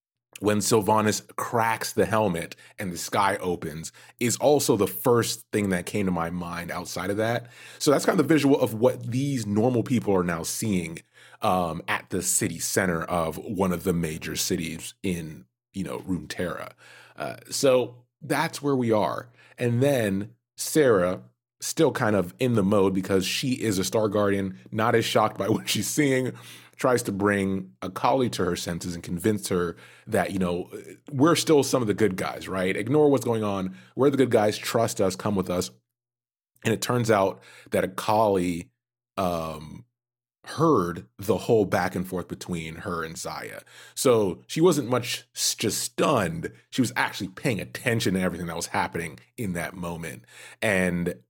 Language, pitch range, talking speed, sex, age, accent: English, 90-120 Hz, 175 wpm, male, 30-49, American